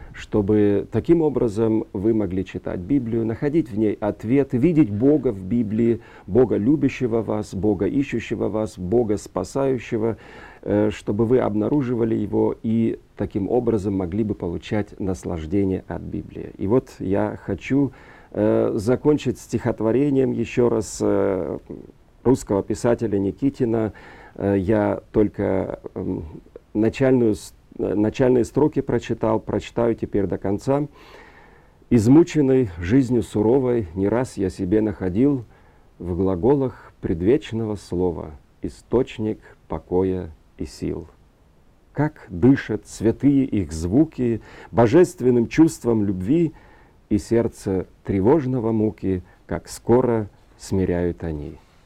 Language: Russian